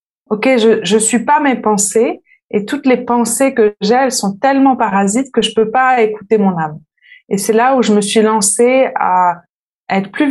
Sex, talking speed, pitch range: female, 210 wpm, 200-250 Hz